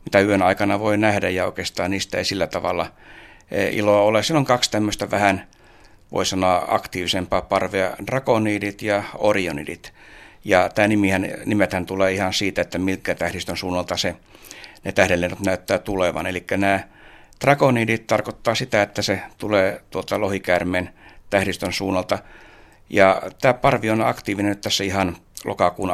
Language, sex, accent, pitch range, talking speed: Finnish, male, native, 90-105 Hz, 135 wpm